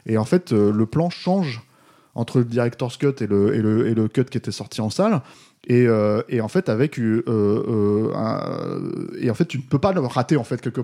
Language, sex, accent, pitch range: French, male, French, 110-140 Hz